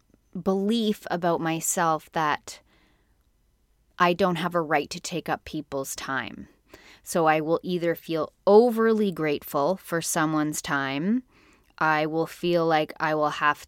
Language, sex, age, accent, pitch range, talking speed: English, female, 20-39, American, 150-180 Hz, 135 wpm